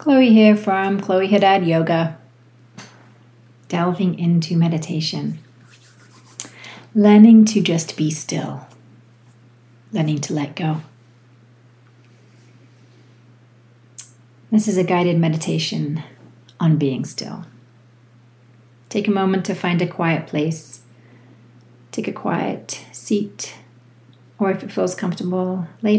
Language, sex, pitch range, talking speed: English, female, 120-170 Hz, 100 wpm